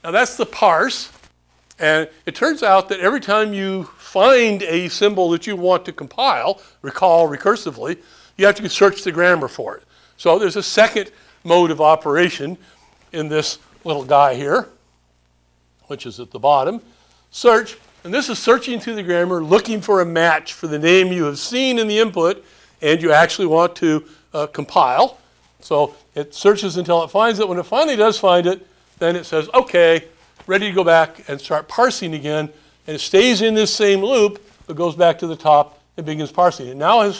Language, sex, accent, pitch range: English, male, American, 155-205 Hz